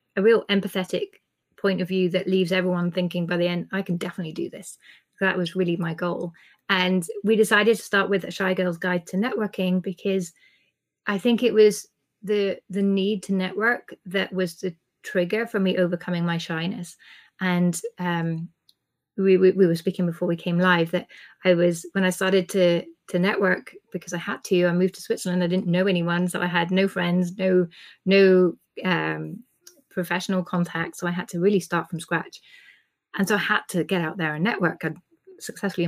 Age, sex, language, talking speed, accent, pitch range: 30-49, female, English, 195 wpm, British, 175-210 Hz